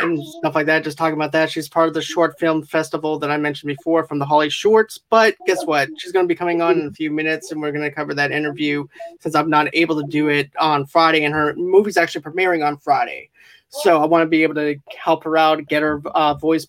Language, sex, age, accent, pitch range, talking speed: English, male, 20-39, American, 155-190 Hz, 265 wpm